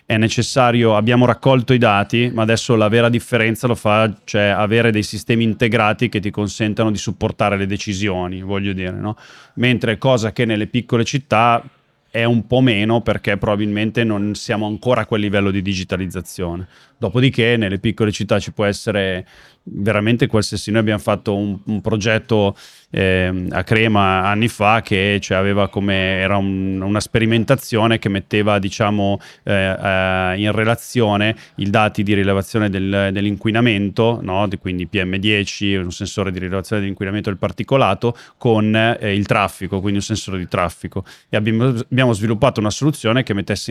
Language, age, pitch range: Italian, 20-39, 100-115 Hz